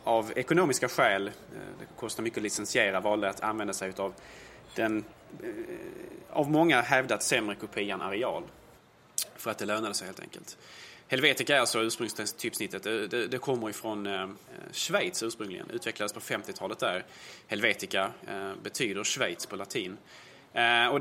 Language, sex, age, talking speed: Swedish, male, 20-39, 135 wpm